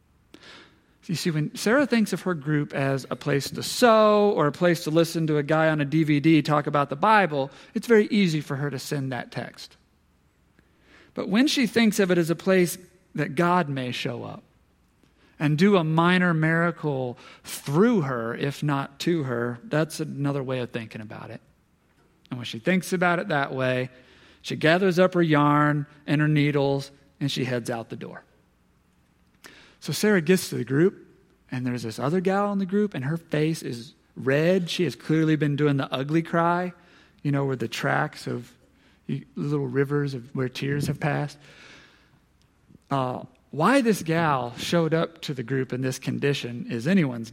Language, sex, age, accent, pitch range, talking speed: English, male, 40-59, American, 135-170 Hz, 185 wpm